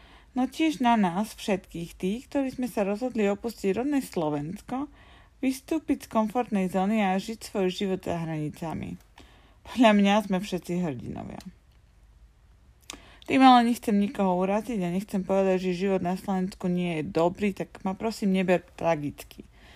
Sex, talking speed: female, 145 wpm